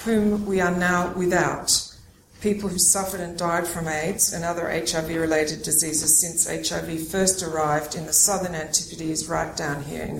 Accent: Australian